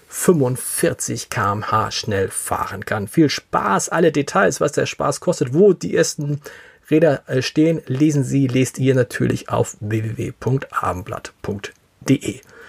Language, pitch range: German, 125-175 Hz